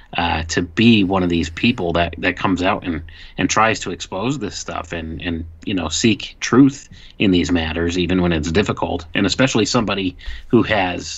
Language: English